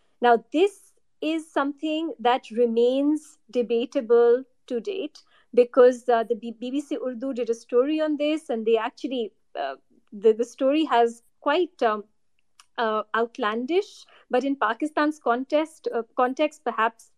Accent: Indian